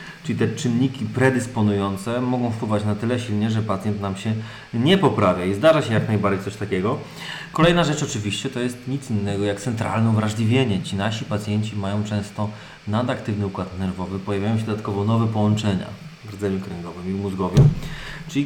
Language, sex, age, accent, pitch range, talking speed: Polish, male, 30-49, native, 100-125 Hz, 165 wpm